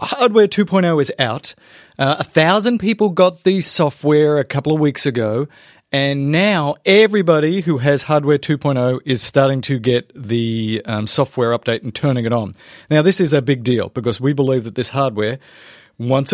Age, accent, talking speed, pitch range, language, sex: 30-49, Australian, 175 wpm, 125-165 Hz, English, male